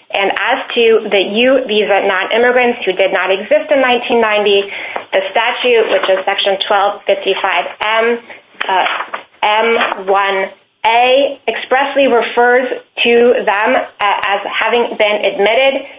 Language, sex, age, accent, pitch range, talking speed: English, female, 30-49, American, 200-240 Hz, 110 wpm